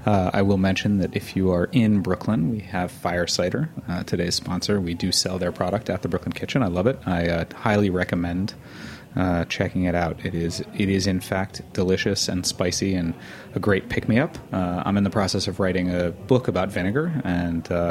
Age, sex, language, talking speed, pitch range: 30-49, male, English, 215 wpm, 90-105 Hz